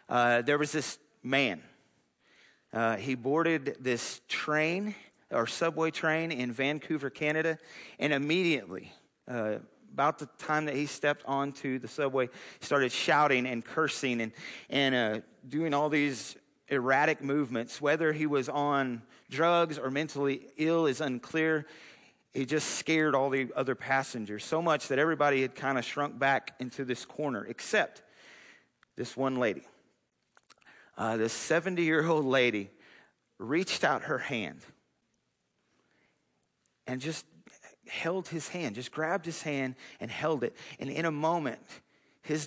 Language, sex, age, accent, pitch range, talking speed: English, male, 40-59, American, 125-155 Hz, 140 wpm